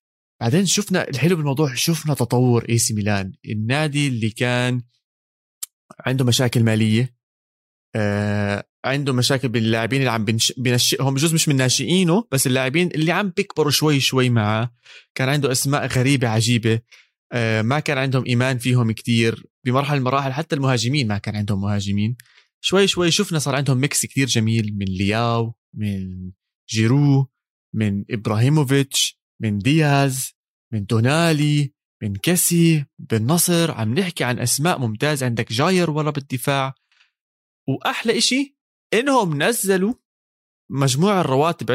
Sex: male